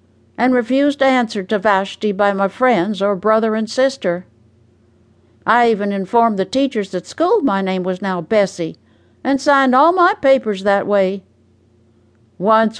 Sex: female